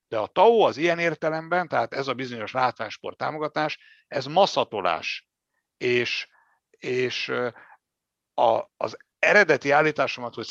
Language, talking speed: Hungarian, 120 wpm